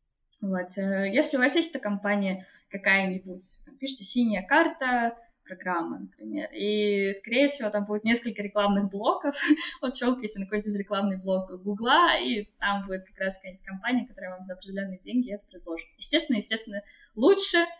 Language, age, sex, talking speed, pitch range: Russian, 20-39, female, 150 wpm, 190-245 Hz